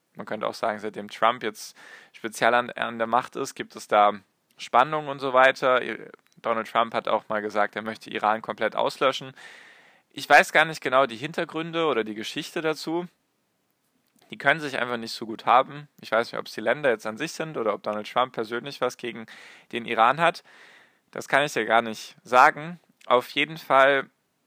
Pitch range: 110-140 Hz